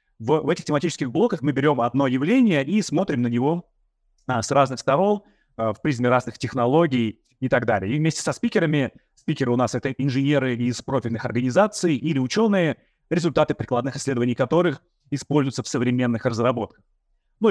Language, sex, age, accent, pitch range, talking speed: Russian, male, 30-49, native, 120-150 Hz, 170 wpm